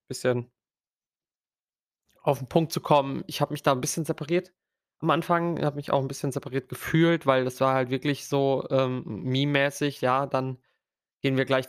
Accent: German